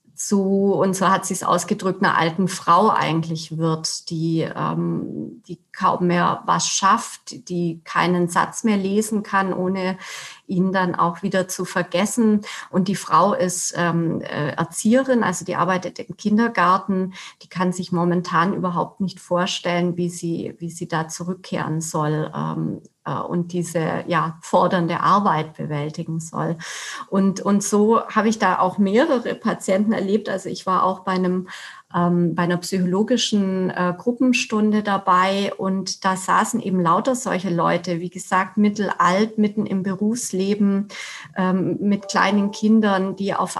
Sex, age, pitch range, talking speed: female, 30-49, 175-205 Hz, 140 wpm